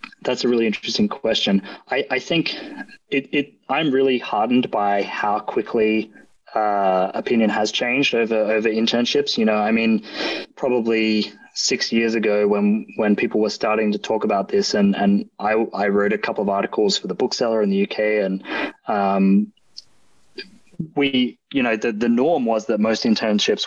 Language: English